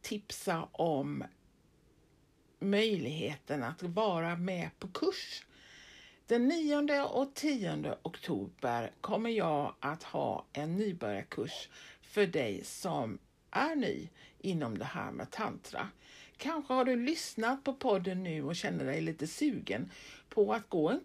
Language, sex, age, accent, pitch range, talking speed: Swedish, female, 60-79, native, 165-260 Hz, 130 wpm